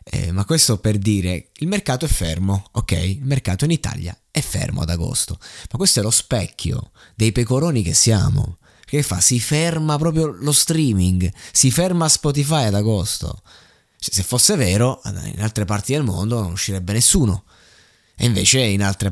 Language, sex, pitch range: Italian, male, 100-130 Hz